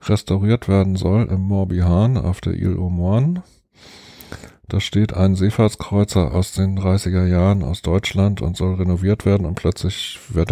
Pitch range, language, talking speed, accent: 90-105 Hz, German, 150 wpm, German